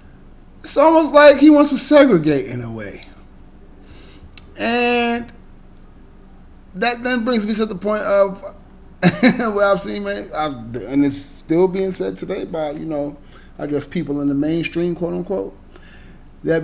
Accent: American